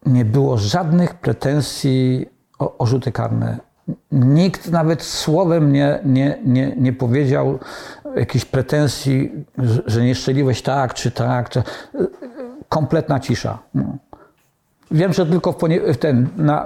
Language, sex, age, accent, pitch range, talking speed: Polish, male, 50-69, native, 140-195 Hz, 125 wpm